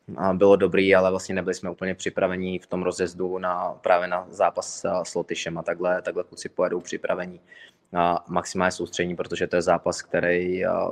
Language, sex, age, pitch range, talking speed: Czech, male, 20-39, 90-100 Hz, 170 wpm